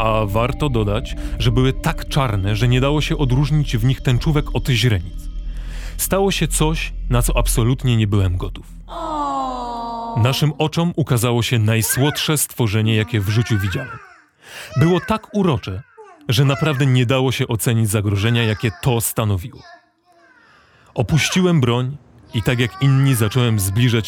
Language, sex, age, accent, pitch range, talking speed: Polish, male, 30-49, native, 110-145 Hz, 140 wpm